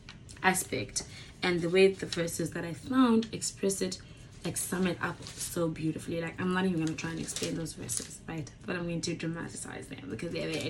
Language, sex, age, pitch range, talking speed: English, female, 20-39, 165-260 Hz, 210 wpm